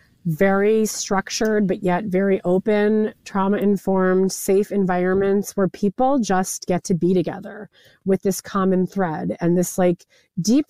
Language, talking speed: English, 135 wpm